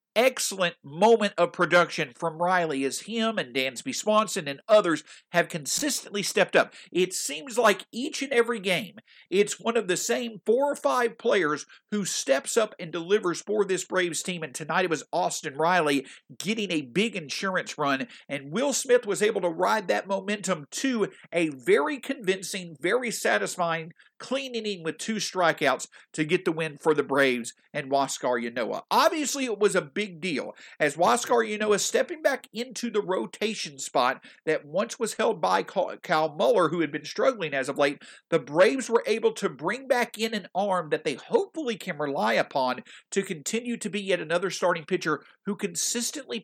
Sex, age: male, 50-69